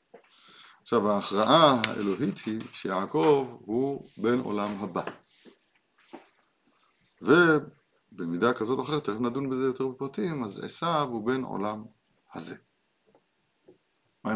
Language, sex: Hebrew, male